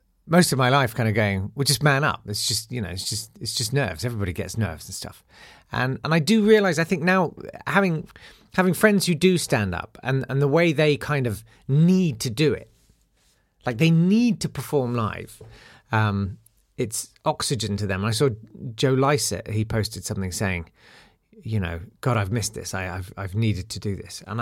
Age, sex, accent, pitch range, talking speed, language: 40-59, male, British, 105-145 Hz, 205 wpm, English